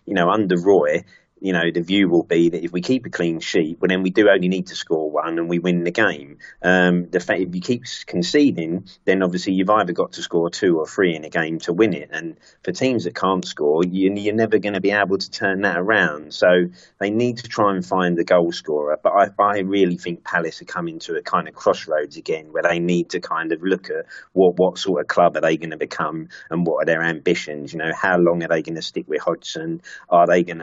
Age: 30-49